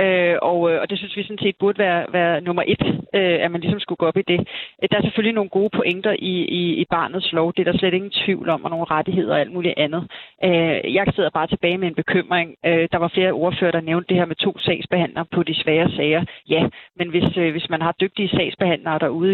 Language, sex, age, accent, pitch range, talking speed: Danish, female, 30-49, native, 170-195 Hz, 235 wpm